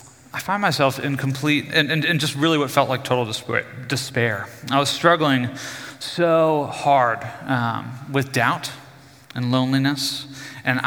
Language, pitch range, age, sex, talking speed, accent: English, 125-145 Hz, 30-49, male, 135 wpm, American